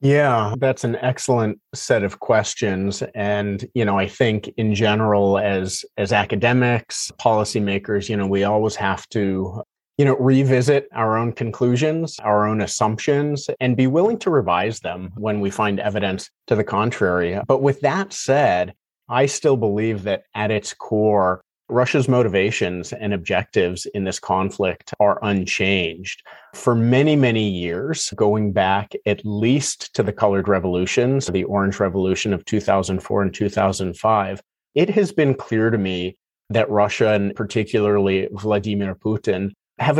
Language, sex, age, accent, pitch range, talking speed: English, male, 30-49, American, 100-125 Hz, 145 wpm